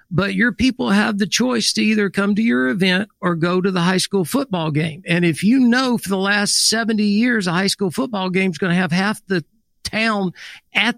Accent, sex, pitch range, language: American, male, 175-210 Hz, English